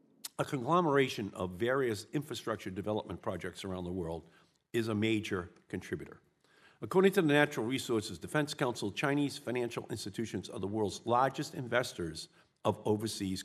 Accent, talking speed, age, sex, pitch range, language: American, 140 wpm, 50-69, male, 100-135 Hz, English